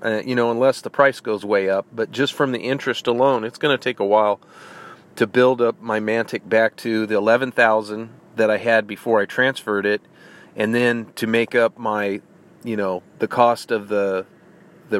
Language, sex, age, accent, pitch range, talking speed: English, male, 40-59, American, 110-135 Hz, 200 wpm